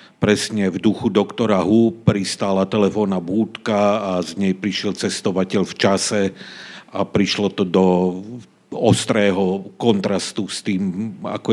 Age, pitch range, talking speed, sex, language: 50-69, 95-120 Hz, 125 wpm, male, Slovak